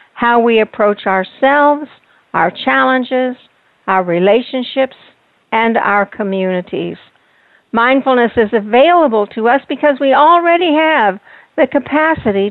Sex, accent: female, American